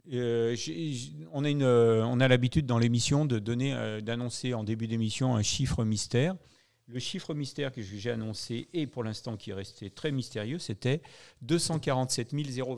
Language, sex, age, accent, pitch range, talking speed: French, male, 40-59, French, 115-140 Hz, 180 wpm